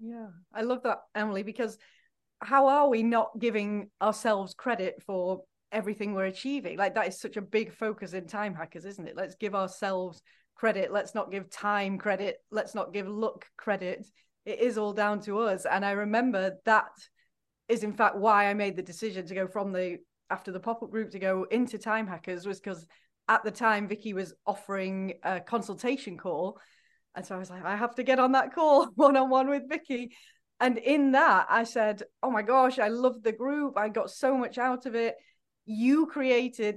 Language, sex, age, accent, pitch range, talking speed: English, female, 30-49, British, 205-250 Hz, 195 wpm